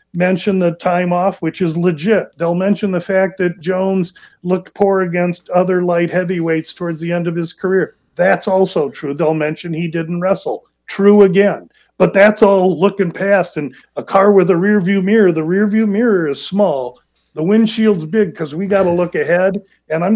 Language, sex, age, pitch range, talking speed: English, male, 40-59, 160-190 Hz, 190 wpm